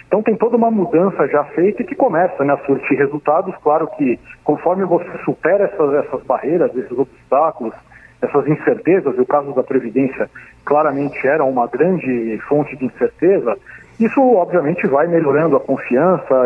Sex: male